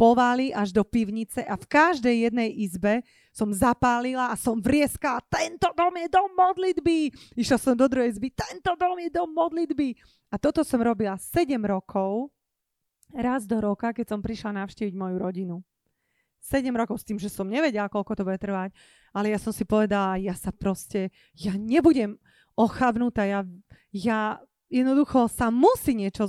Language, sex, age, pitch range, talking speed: Slovak, female, 30-49, 200-250 Hz, 165 wpm